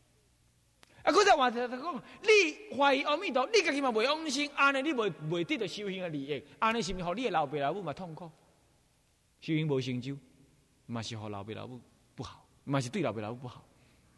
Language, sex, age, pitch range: Chinese, male, 20-39, 125-200 Hz